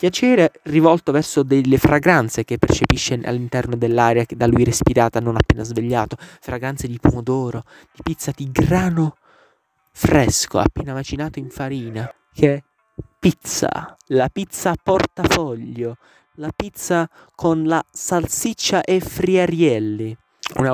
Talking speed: 120 wpm